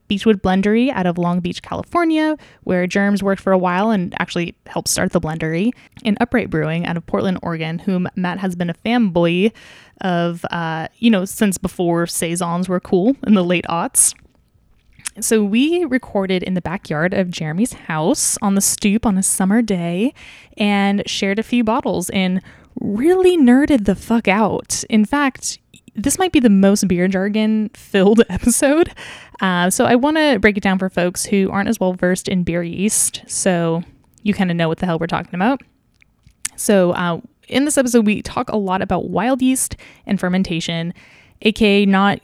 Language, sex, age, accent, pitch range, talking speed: English, female, 10-29, American, 180-225 Hz, 180 wpm